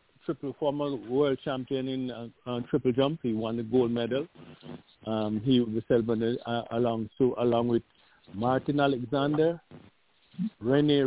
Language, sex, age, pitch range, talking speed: English, male, 50-69, 125-160 Hz, 140 wpm